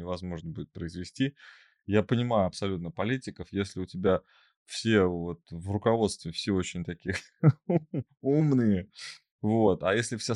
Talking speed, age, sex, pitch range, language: 125 wpm, 20-39, male, 90-120 Hz, Russian